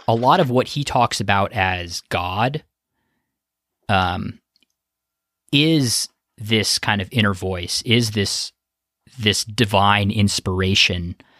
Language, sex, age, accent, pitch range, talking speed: English, male, 20-39, American, 95-115 Hz, 110 wpm